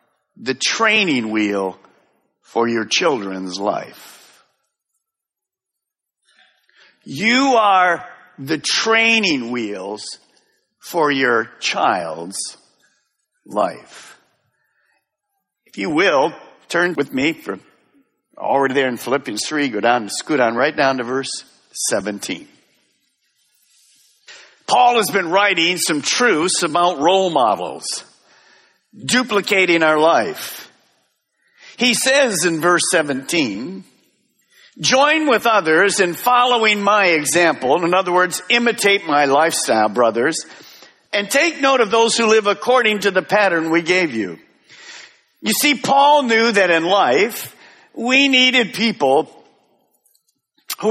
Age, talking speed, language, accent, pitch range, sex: 50-69, 110 wpm, English, American, 155-245 Hz, male